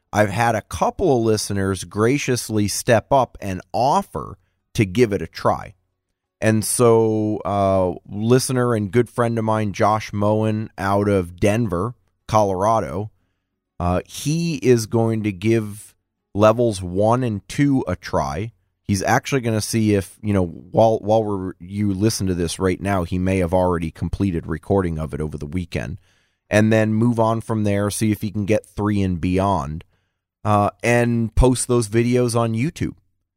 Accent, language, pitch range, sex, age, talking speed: American, English, 95-115 Hz, male, 20-39, 165 wpm